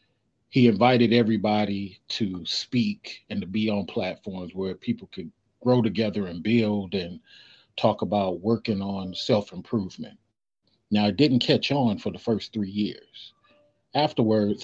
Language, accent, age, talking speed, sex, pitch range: English, American, 40-59, 140 wpm, male, 105-125 Hz